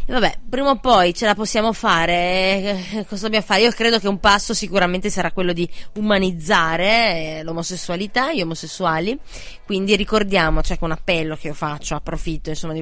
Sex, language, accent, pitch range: female, Italian, native, 165-205 Hz